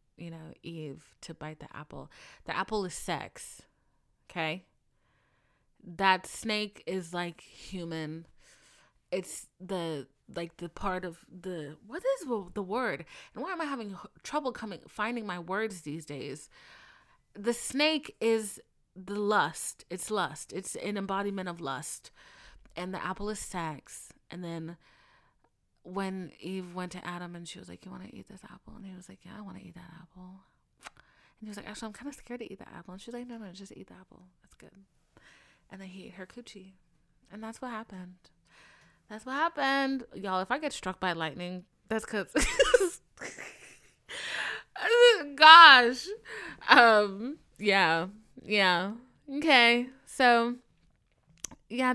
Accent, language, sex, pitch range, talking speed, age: American, English, female, 175-235 Hz, 160 wpm, 30-49